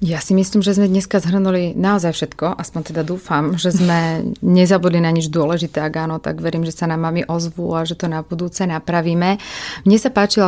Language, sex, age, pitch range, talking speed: Slovak, female, 30-49, 165-180 Hz, 205 wpm